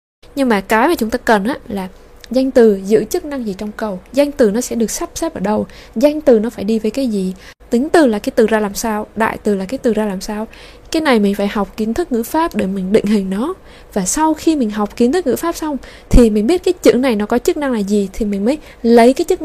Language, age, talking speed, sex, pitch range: Vietnamese, 20-39, 285 wpm, female, 205-275 Hz